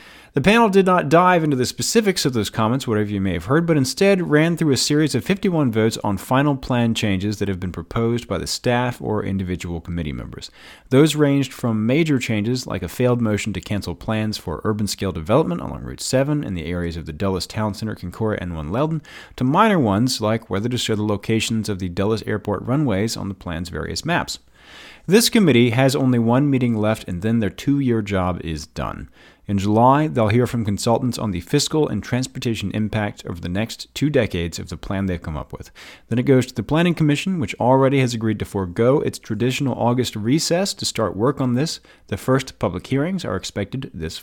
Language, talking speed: English, 210 wpm